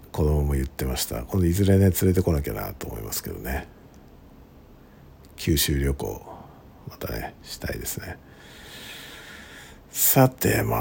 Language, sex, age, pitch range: Japanese, male, 50-69, 70-100 Hz